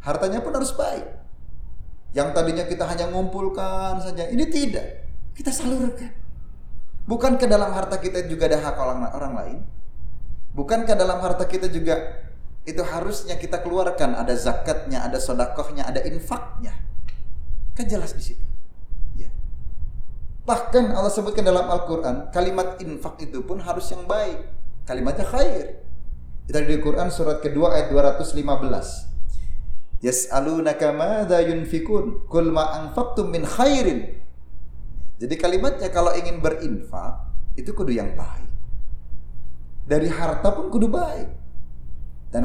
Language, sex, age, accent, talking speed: Indonesian, male, 30-49, native, 115 wpm